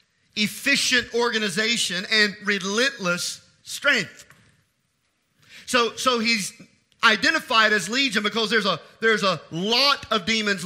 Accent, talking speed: American, 105 wpm